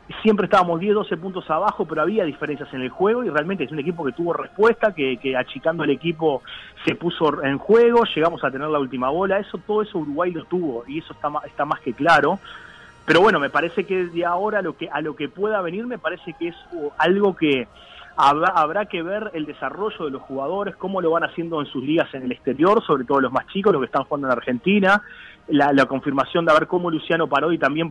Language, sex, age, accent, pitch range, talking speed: Spanish, male, 30-49, Argentinian, 150-210 Hz, 235 wpm